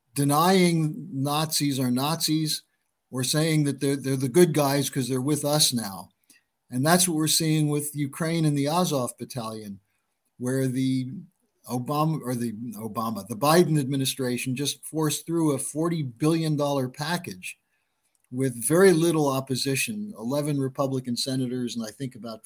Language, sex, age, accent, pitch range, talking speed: English, male, 50-69, American, 125-155 Hz, 145 wpm